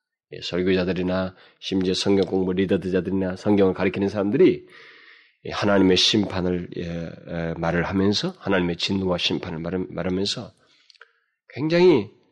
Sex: male